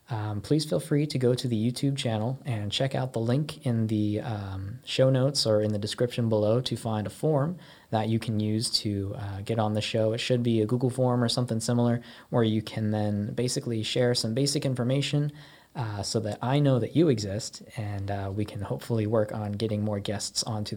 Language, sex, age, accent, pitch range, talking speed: English, male, 20-39, American, 105-130 Hz, 220 wpm